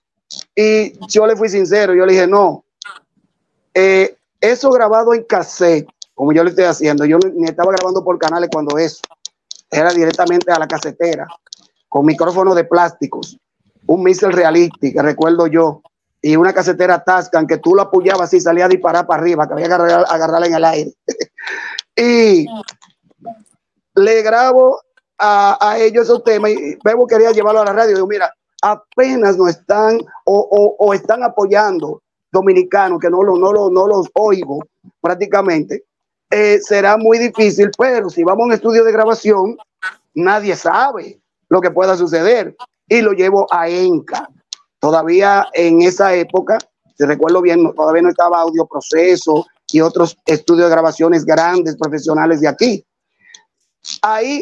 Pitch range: 170-220 Hz